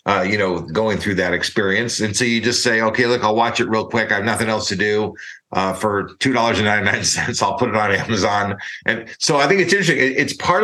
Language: English